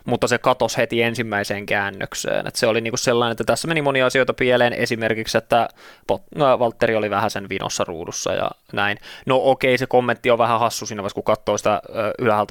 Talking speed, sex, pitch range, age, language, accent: 190 wpm, male, 100-120 Hz, 20-39, Finnish, native